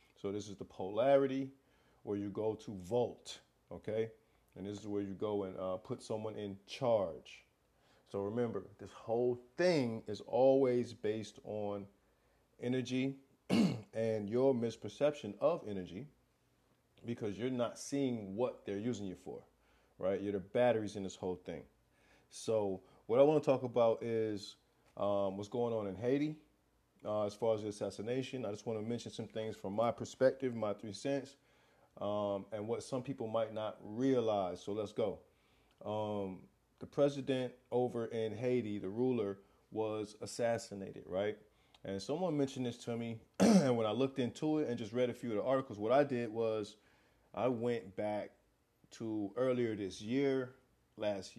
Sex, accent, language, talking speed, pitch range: male, American, English, 165 wpm, 105-125 Hz